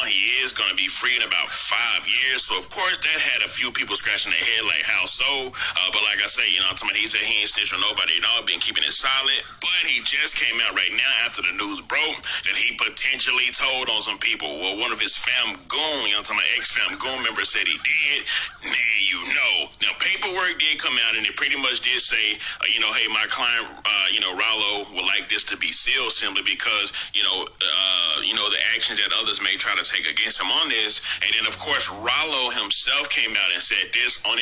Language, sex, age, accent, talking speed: English, male, 40-59, American, 240 wpm